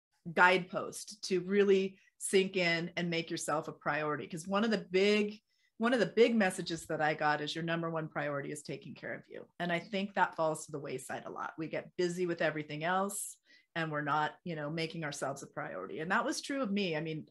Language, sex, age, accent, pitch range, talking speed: English, female, 30-49, American, 155-185 Hz, 230 wpm